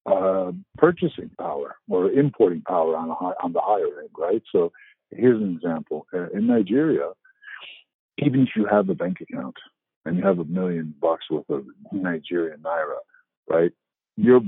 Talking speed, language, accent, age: 160 wpm, English, American, 50-69